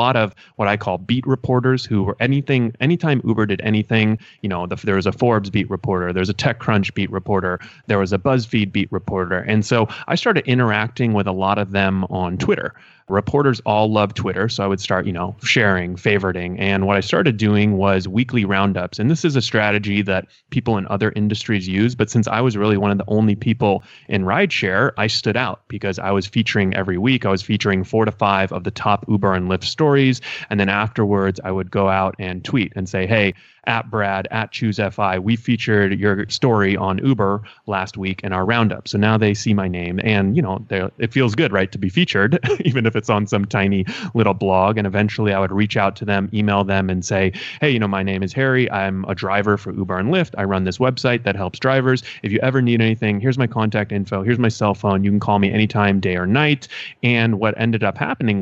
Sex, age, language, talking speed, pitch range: male, 30-49, English, 230 wpm, 95-115 Hz